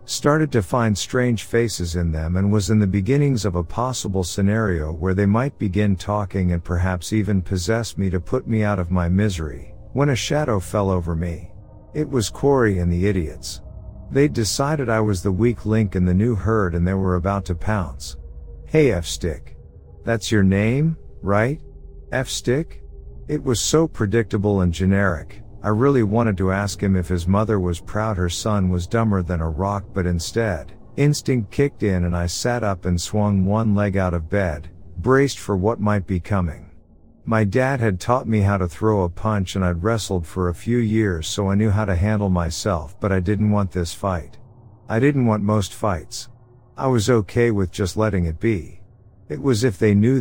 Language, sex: English, male